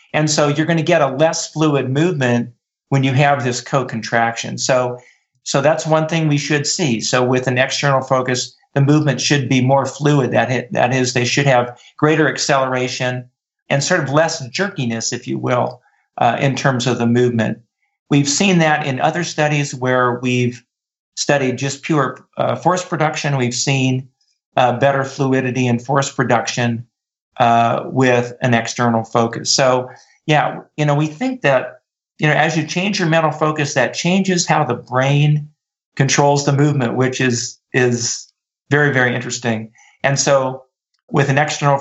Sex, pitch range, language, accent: male, 125-150 Hz, English, American